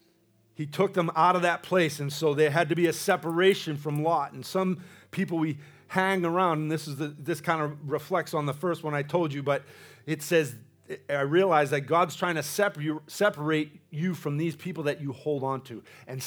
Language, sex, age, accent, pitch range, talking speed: English, male, 40-59, American, 115-155 Hz, 220 wpm